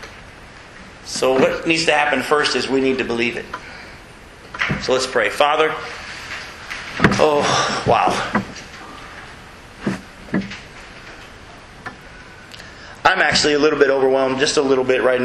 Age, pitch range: 40-59, 130-160 Hz